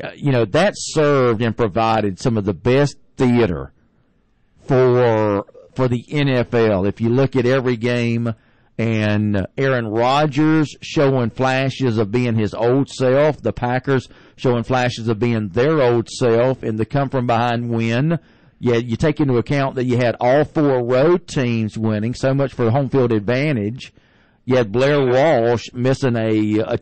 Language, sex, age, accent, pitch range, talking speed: English, male, 50-69, American, 115-140 Hz, 155 wpm